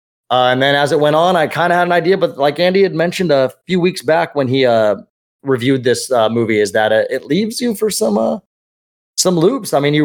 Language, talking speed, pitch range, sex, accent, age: English, 250 wpm, 115-165 Hz, male, American, 20-39